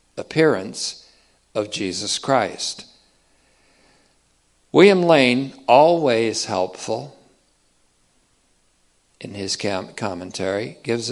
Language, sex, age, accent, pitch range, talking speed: English, male, 60-79, American, 105-145 Hz, 70 wpm